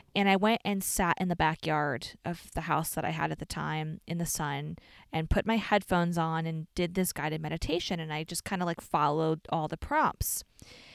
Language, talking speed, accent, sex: English, 220 wpm, American, female